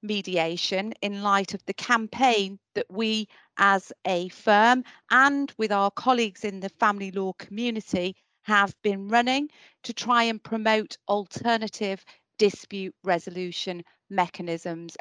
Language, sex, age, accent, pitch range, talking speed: English, female, 40-59, British, 180-220 Hz, 125 wpm